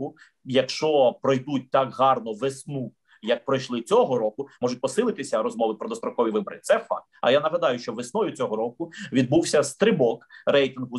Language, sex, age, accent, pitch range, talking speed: Ukrainian, male, 30-49, native, 140-205 Hz, 150 wpm